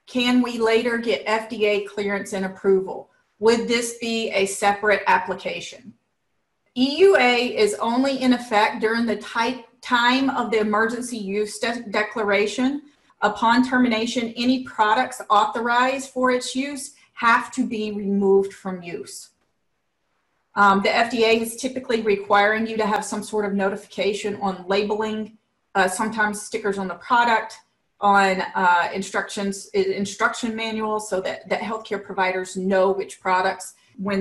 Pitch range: 200-235 Hz